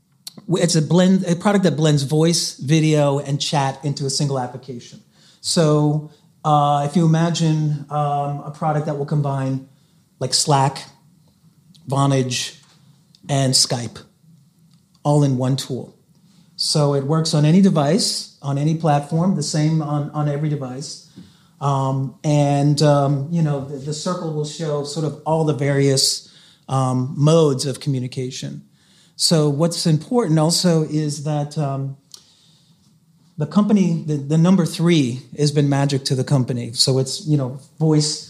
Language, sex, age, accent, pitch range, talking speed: English, male, 30-49, American, 140-165 Hz, 145 wpm